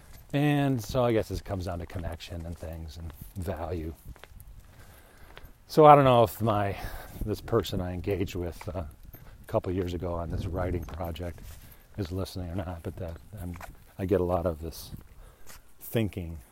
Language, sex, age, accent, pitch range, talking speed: English, male, 40-59, American, 80-105 Hz, 170 wpm